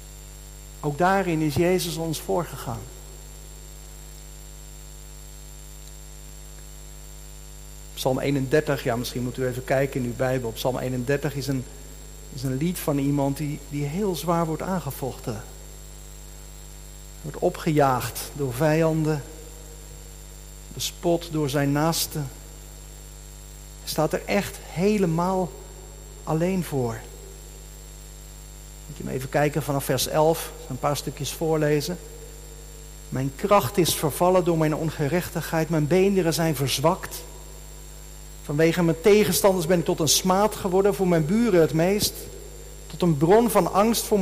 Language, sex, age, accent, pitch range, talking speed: Dutch, male, 50-69, Dutch, 140-170 Hz, 120 wpm